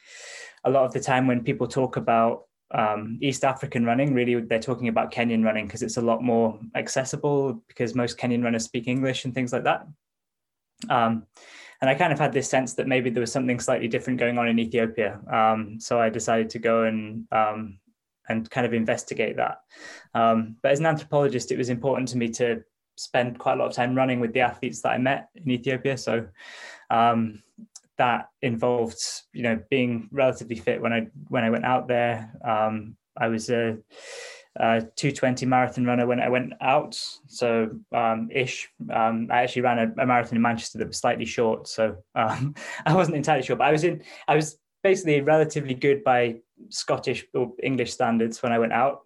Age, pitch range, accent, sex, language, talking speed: 10-29, 115-130 Hz, British, male, English, 200 wpm